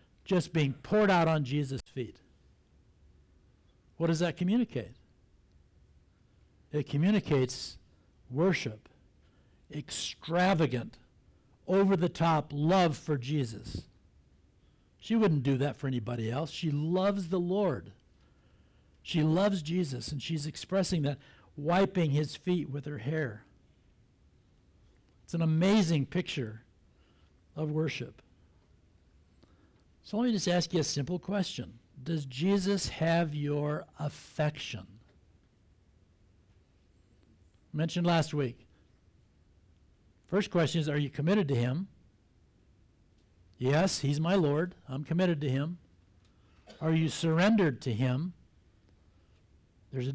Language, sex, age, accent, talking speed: English, male, 60-79, American, 105 wpm